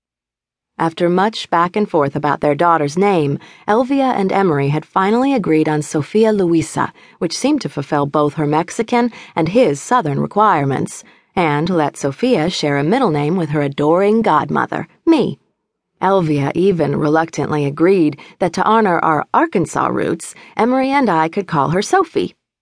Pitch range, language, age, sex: 150-200 Hz, English, 40-59, female